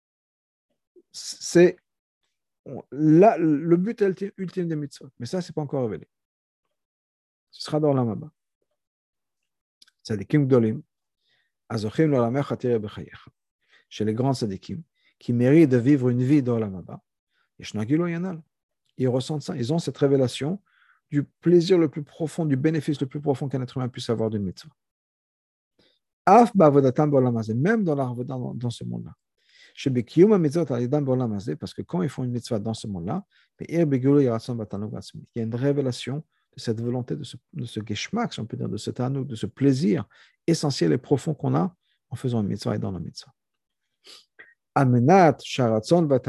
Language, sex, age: French, male, 50-69